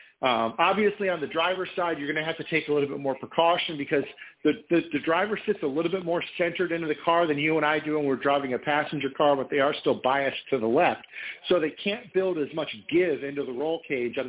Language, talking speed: English, 260 wpm